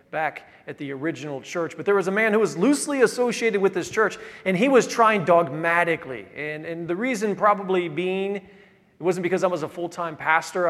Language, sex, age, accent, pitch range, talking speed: English, male, 40-59, American, 165-210 Hz, 200 wpm